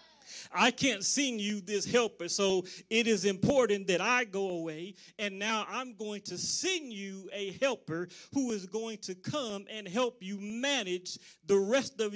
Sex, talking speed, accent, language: male, 175 wpm, American, English